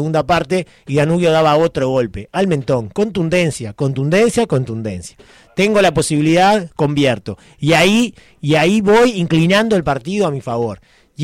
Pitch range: 135-185 Hz